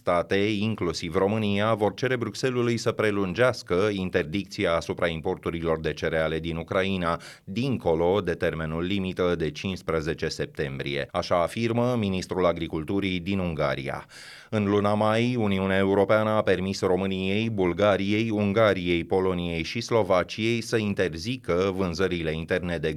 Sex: male